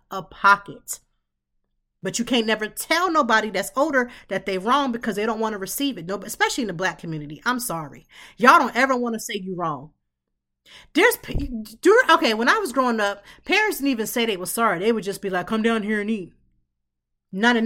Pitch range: 185-255 Hz